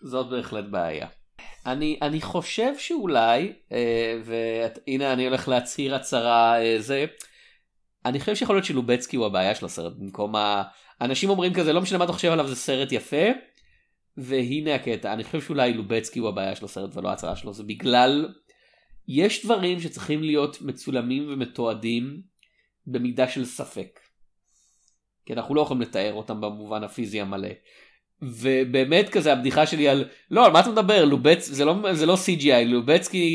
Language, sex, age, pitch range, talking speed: Hebrew, male, 30-49, 125-170 Hz, 155 wpm